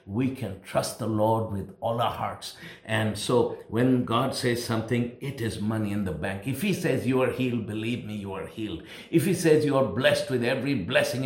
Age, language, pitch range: 60-79, English, 120-145 Hz